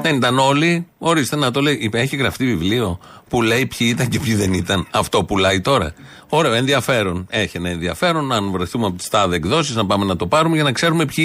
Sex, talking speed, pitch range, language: male, 230 wpm, 100-135 Hz, Greek